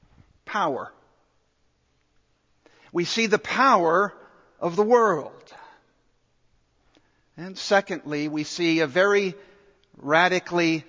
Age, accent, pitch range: 60-79, American, 145-210 Hz